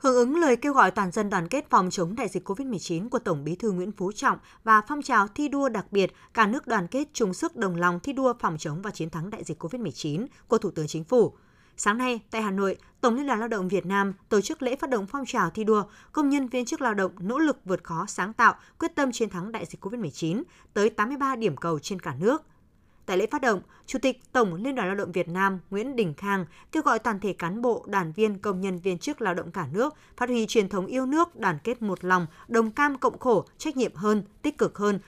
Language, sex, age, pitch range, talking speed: Vietnamese, female, 20-39, 185-255 Hz, 255 wpm